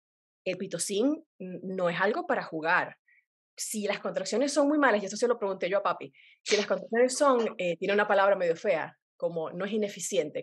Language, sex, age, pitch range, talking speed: Spanish, female, 30-49, 190-260 Hz, 200 wpm